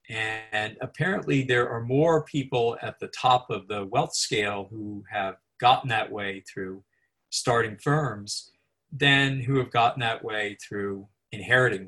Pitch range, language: 100-130 Hz, English